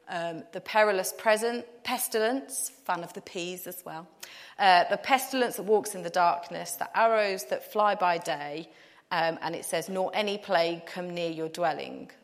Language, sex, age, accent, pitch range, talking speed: English, female, 30-49, British, 170-230 Hz, 170 wpm